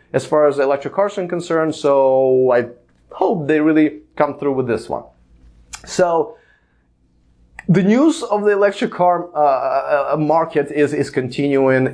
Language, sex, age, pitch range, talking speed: English, male, 30-49, 110-160 Hz, 150 wpm